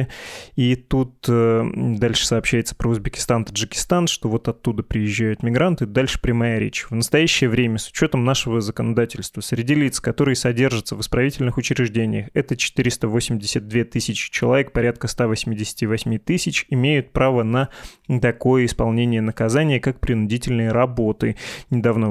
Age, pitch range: 20-39, 110-130 Hz